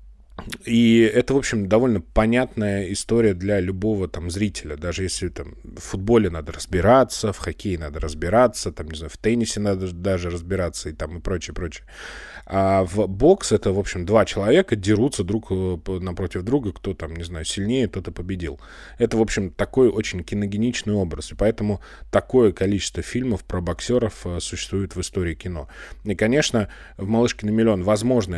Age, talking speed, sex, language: 20-39, 165 wpm, male, Russian